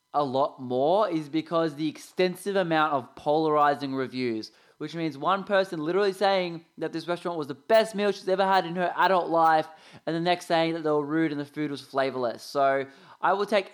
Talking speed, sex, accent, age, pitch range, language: 210 wpm, male, Australian, 20-39, 155-200 Hz, English